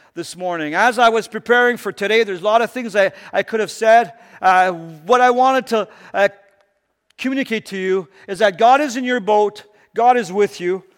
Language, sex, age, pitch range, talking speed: English, male, 50-69, 180-245 Hz, 210 wpm